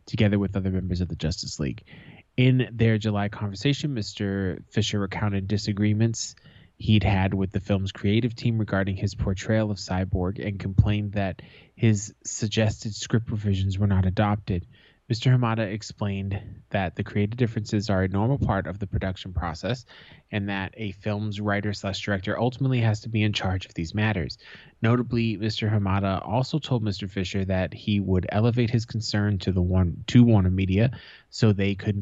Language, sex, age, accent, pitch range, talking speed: English, male, 20-39, American, 100-115 Hz, 170 wpm